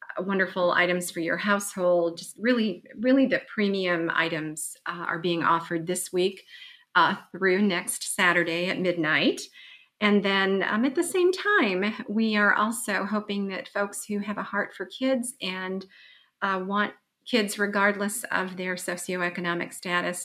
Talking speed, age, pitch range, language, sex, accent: 150 wpm, 40-59, 170-210 Hz, English, female, American